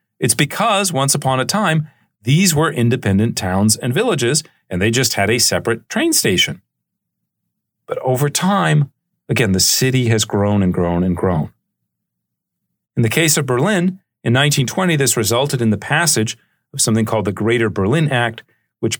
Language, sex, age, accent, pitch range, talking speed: English, male, 40-59, American, 110-145 Hz, 165 wpm